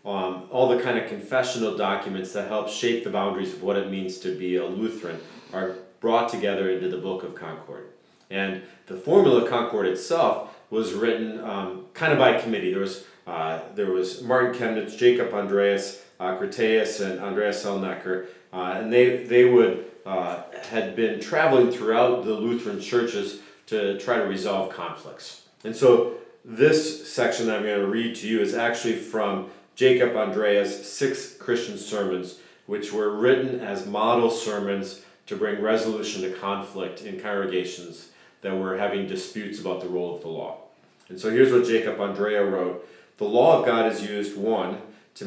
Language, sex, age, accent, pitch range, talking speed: English, male, 40-59, American, 95-120 Hz, 170 wpm